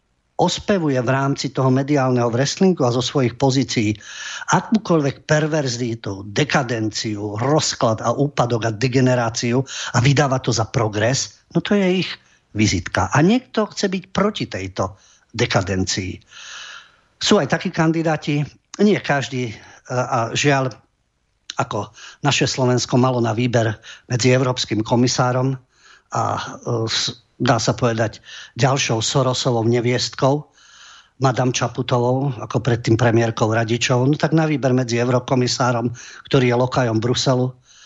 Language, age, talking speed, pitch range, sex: English, 50-69, 120 wpm, 115-140 Hz, male